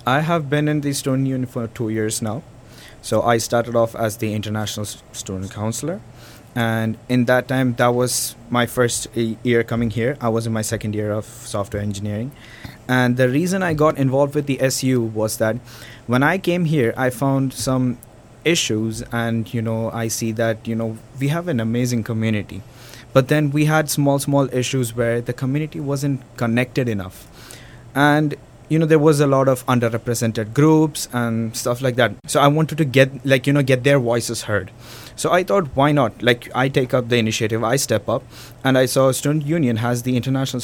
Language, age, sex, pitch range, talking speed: English, 20-39, male, 115-135 Hz, 200 wpm